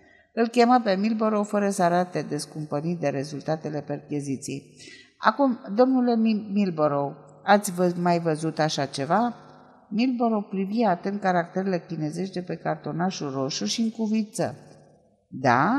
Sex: female